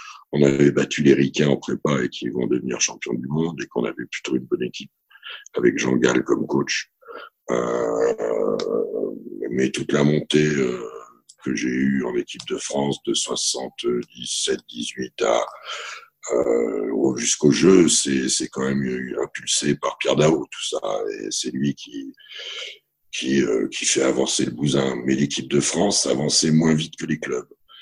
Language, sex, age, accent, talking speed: French, male, 60-79, French, 160 wpm